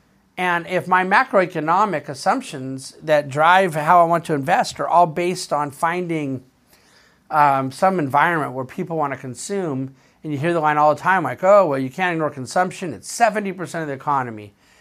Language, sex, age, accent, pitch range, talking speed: English, male, 50-69, American, 140-190 Hz, 185 wpm